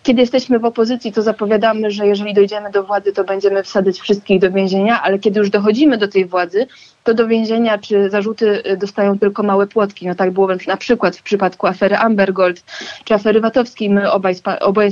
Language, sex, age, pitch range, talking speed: Polish, female, 20-39, 205-250 Hz, 195 wpm